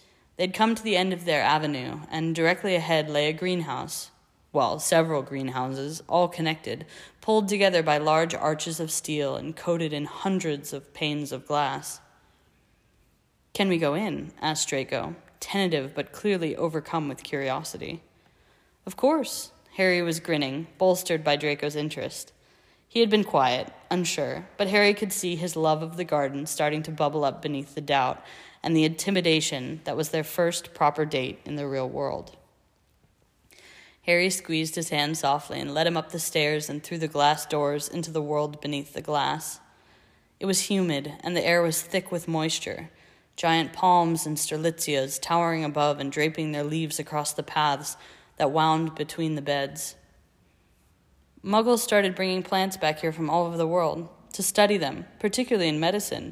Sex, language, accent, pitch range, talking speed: female, English, American, 145-175 Hz, 165 wpm